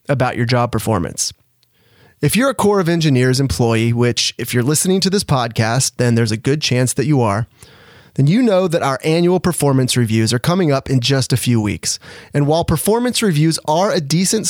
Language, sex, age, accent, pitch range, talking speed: English, male, 30-49, American, 120-160 Hz, 205 wpm